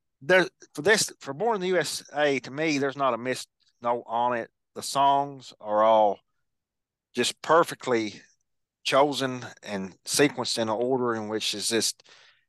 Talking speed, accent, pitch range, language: 160 wpm, American, 120-145 Hz, English